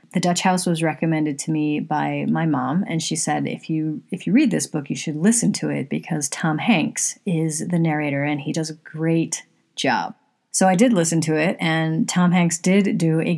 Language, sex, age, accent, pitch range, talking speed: English, female, 30-49, American, 160-195 Hz, 220 wpm